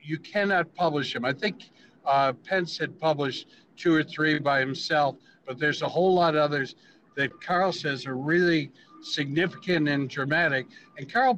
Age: 60-79